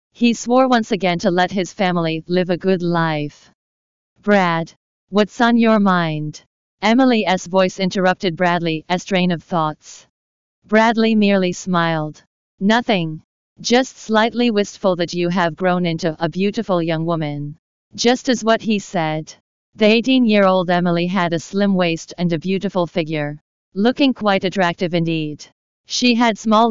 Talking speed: 140 wpm